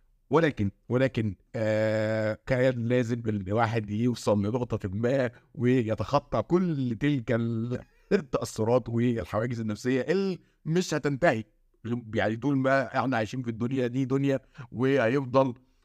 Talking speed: 110 wpm